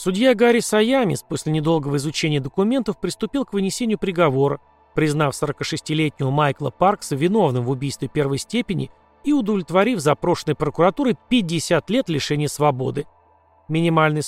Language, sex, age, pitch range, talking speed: Russian, male, 30-49, 140-200 Hz, 120 wpm